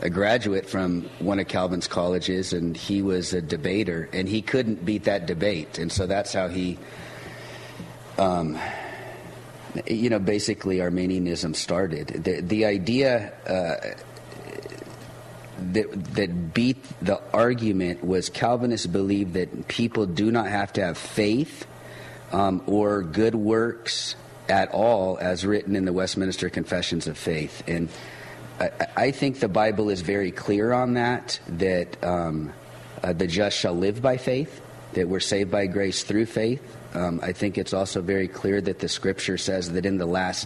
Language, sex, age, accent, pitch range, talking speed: English, male, 40-59, American, 90-110 Hz, 155 wpm